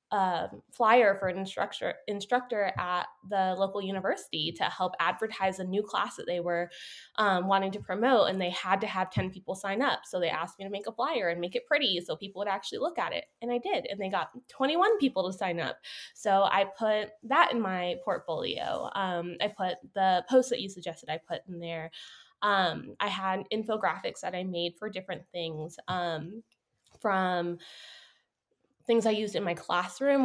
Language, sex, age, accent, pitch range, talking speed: English, female, 10-29, American, 180-220 Hz, 195 wpm